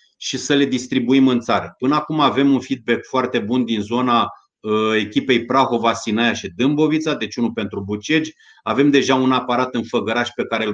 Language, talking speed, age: Romanian, 185 wpm, 30-49